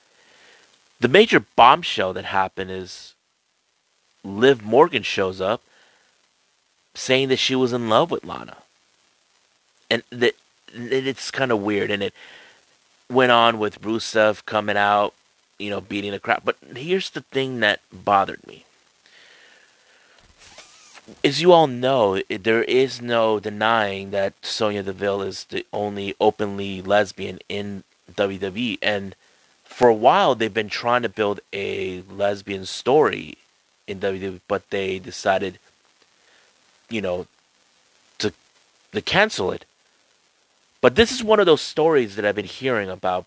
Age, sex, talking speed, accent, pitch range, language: 30-49, male, 135 wpm, American, 100-130 Hz, English